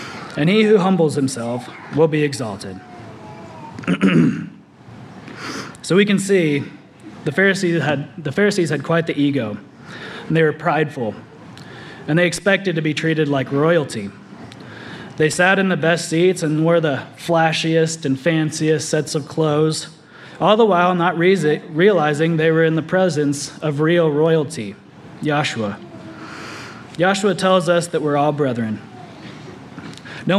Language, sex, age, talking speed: English, male, 20-39, 140 wpm